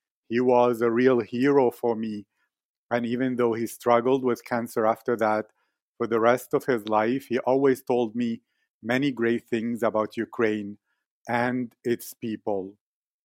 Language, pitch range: English, 115-135 Hz